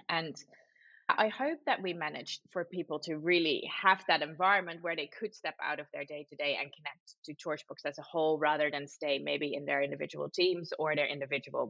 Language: English